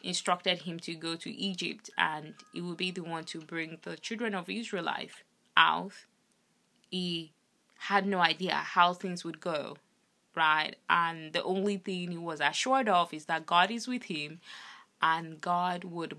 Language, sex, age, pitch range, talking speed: English, female, 20-39, 170-205 Hz, 170 wpm